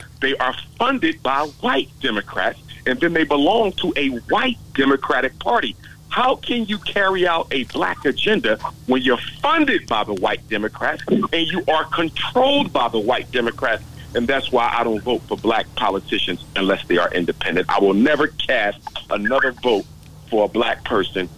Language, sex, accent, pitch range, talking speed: English, male, American, 140-210 Hz, 170 wpm